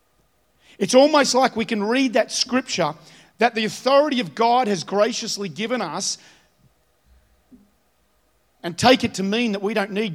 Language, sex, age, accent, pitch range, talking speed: English, male, 40-59, Australian, 190-235 Hz, 155 wpm